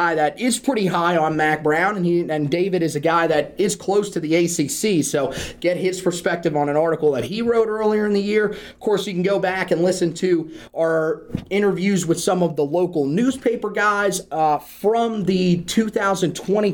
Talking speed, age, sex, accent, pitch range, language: 200 wpm, 30-49, male, American, 155-195 Hz, English